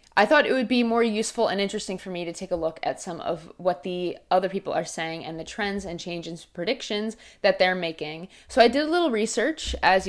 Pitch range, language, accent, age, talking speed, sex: 175-220 Hz, English, American, 20-39, 240 wpm, female